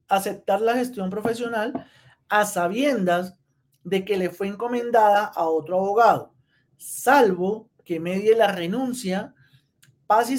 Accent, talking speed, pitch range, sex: Colombian, 120 wpm, 165-215 Hz, male